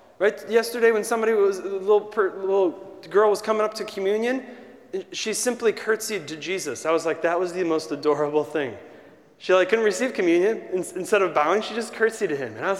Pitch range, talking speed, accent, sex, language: 180-260 Hz, 215 wpm, American, male, English